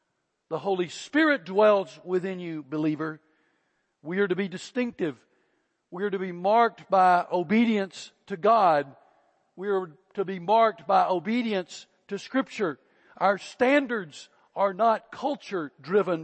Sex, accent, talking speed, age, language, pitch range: male, American, 130 wpm, 60-79, English, 150-195 Hz